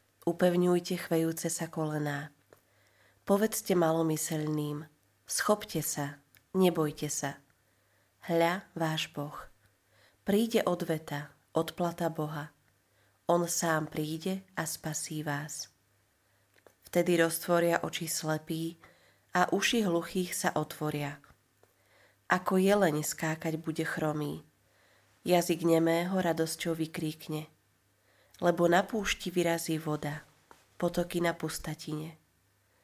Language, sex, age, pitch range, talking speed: Slovak, female, 30-49, 145-175 Hz, 90 wpm